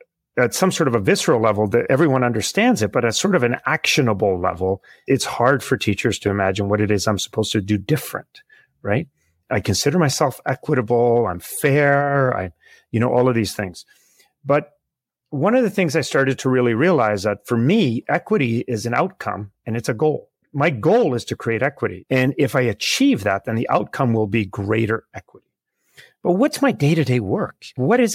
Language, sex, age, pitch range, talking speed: English, male, 40-59, 110-150 Hz, 195 wpm